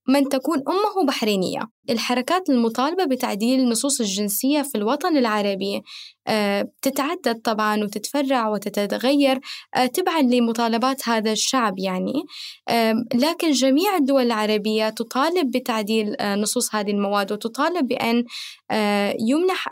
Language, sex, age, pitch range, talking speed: Arabic, female, 10-29, 225-290 Hz, 100 wpm